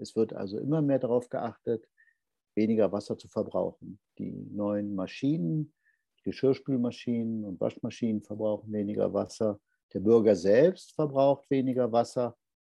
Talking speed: 125 wpm